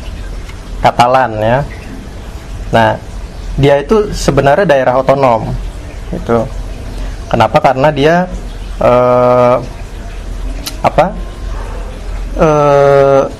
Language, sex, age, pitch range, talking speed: Indonesian, male, 30-49, 105-140 Hz, 65 wpm